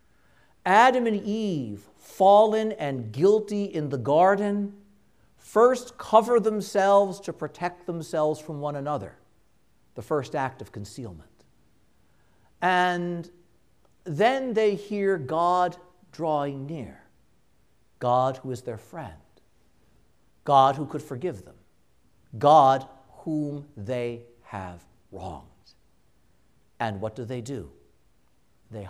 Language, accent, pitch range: English, American, 125-205 Hz